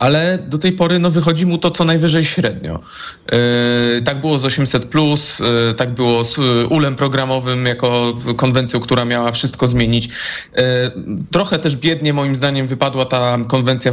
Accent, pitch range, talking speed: native, 125-150 Hz, 140 wpm